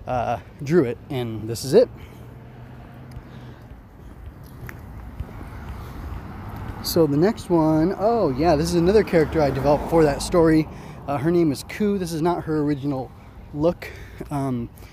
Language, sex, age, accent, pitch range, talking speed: English, male, 20-39, American, 105-150 Hz, 135 wpm